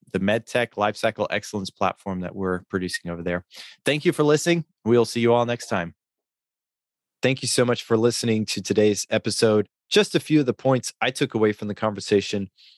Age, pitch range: 30-49, 110-155 Hz